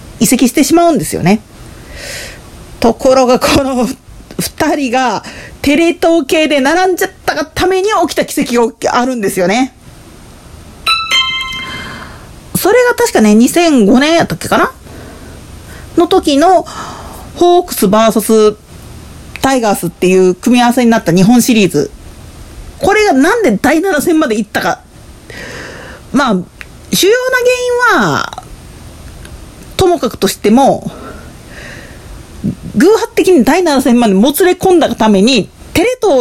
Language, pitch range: Japanese, 240-355 Hz